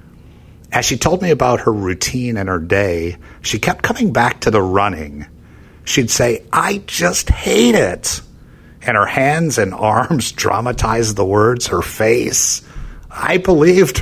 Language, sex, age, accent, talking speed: English, male, 50-69, American, 150 wpm